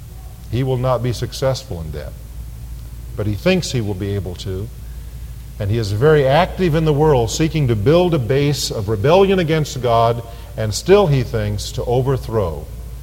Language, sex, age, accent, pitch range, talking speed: English, male, 50-69, American, 100-145 Hz, 175 wpm